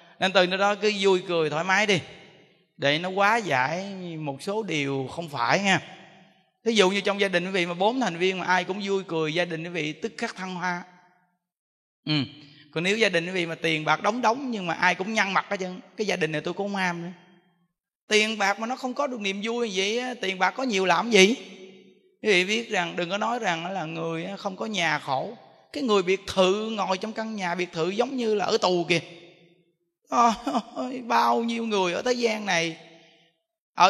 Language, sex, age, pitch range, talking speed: Vietnamese, male, 20-39, 175-240 Hz, 220 wpm